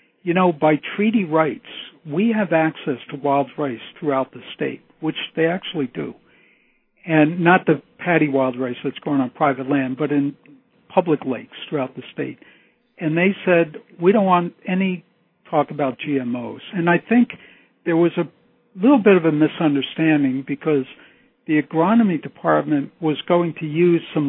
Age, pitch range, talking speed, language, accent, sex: 60-79, 135-170 Hz, 165 wpm, English, American, male